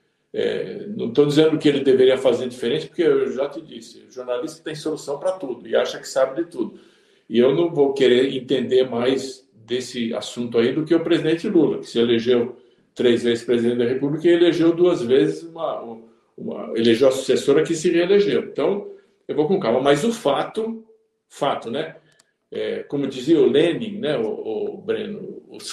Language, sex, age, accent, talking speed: Portuguese, male, 60-79, Brazilian, 190 wpm